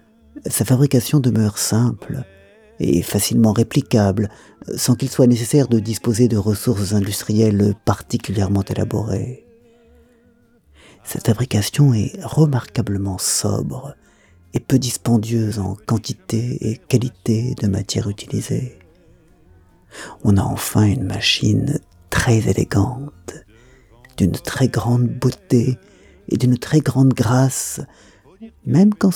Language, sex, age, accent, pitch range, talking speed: French, male, 50-69, French, 100-130 Hz, 105 wpm